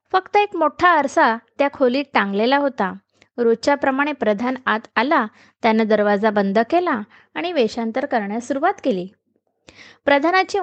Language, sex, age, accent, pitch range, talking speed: Marathi, female, 20-39, native, 230-305 Hz, 130 wpm